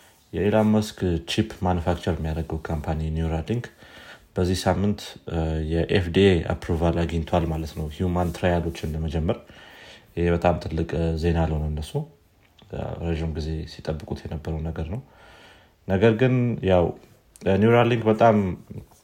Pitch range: 80-95 Hz